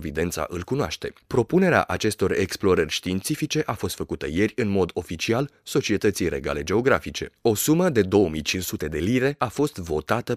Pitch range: 90-145 Hz